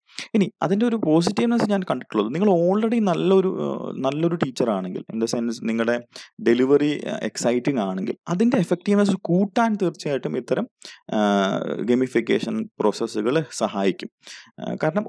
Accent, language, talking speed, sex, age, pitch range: native, Malayalam, 105 wpm, male, 30-49, 120-180 Hz